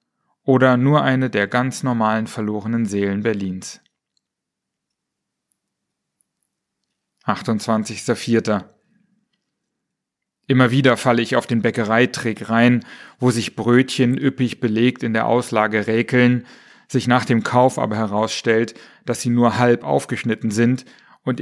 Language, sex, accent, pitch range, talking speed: German, male, German, 110-125 Hz, 110 wpm